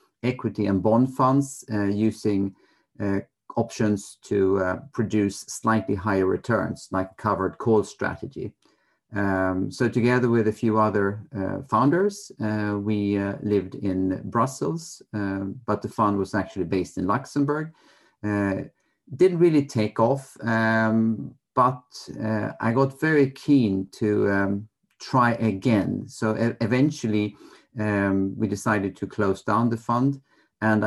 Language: English